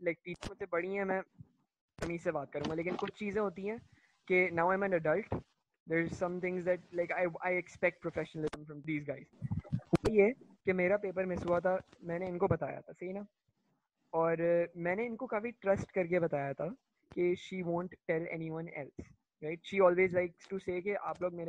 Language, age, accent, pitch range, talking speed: English, 20-39, Indian, 170-205 Hz, 130 wpm